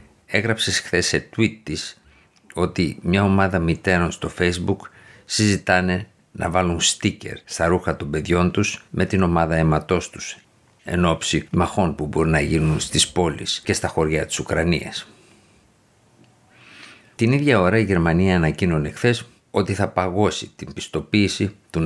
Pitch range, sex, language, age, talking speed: 80-100 Hz, male, Greek, 50-69, 140 wpm